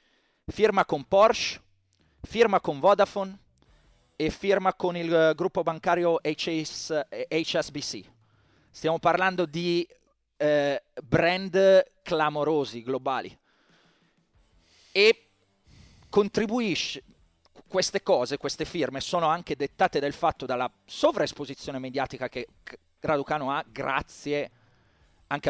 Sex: male